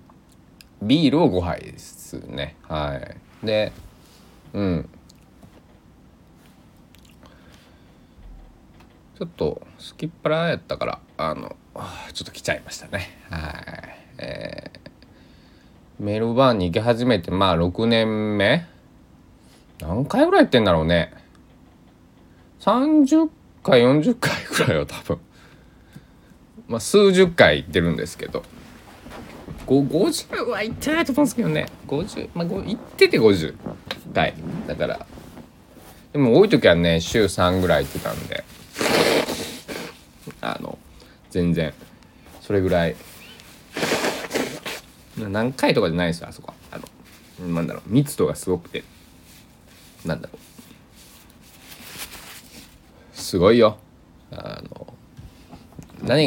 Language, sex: Japanese, male